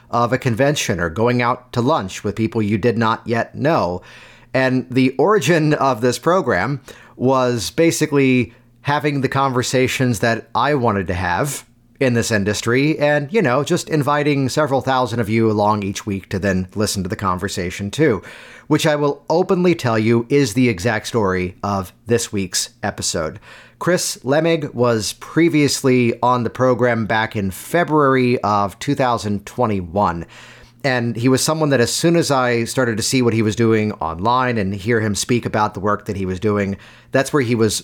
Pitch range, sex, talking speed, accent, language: 110-135 Hz, male, 175 wpm, American, English